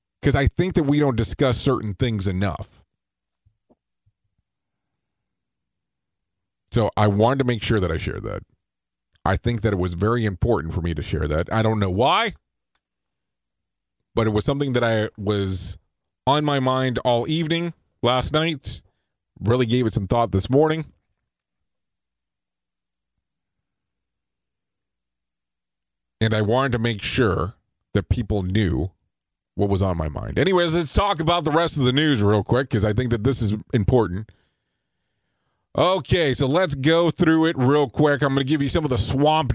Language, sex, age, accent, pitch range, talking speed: English, male, 40-59, American, 100-135 Hz, 160 wpm